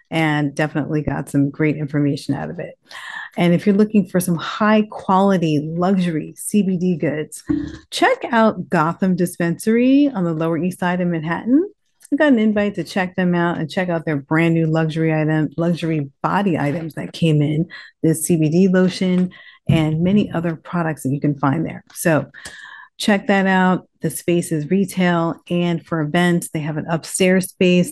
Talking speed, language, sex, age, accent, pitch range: 175 wpm, English, female, 40-59, American, 160-200 Hz